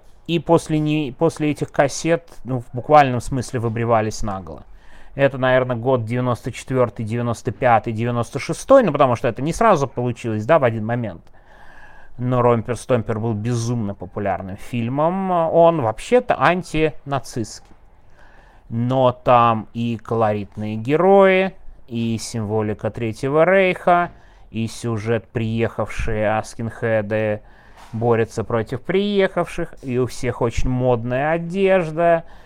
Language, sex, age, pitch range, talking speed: Russian, male, 30-49, 115-150 Hz, 110 wpm